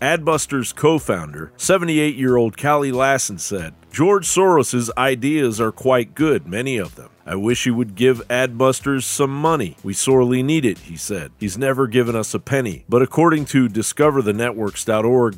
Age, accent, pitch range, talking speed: 40-59, American, 110-140 Hz, 150 wpm